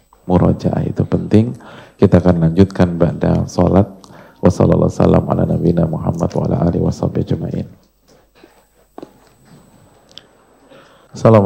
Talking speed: 100 wpm